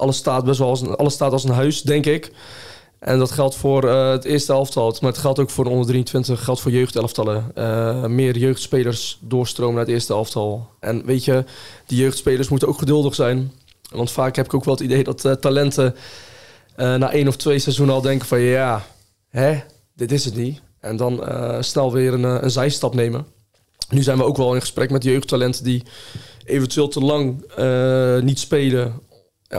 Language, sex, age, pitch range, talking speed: Dutch, male, 20-39, 125-135 Hz, 190 wpm